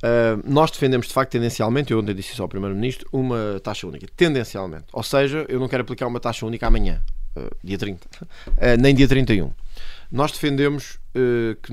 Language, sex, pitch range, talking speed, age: Portuguese, male, 110-135 Hz, 170 wpm, 20-39